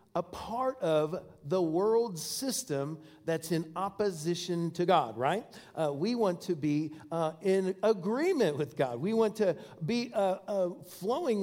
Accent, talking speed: American, 150 wpm